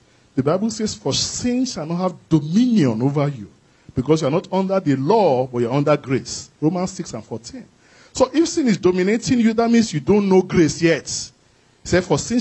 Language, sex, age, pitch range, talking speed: English, male, 40-59, 140-205 Hz, 215 wpm